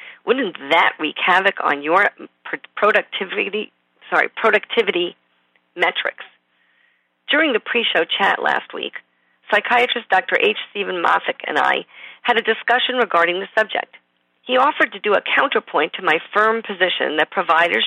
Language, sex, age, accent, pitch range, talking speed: English, female, 40-59, American, 170-240 Hz, 140 wpm